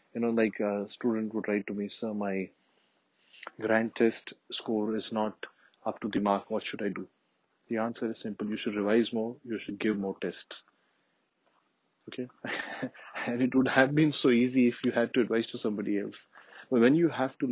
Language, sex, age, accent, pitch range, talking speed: English, male, 30-49, Indian, 105-120 Hz, 200 wpm